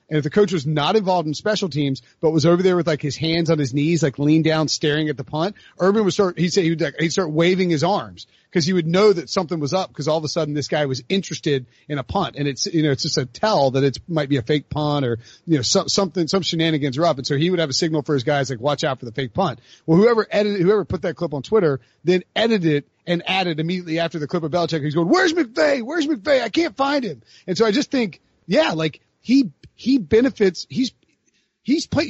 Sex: male